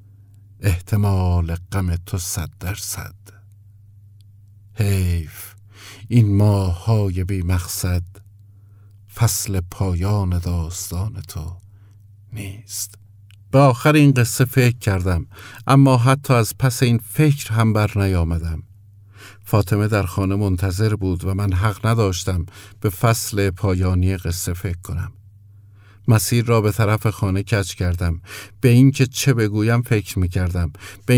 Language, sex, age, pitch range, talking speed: Persian, male, 50-69, 95-110 Hz, 115 wpm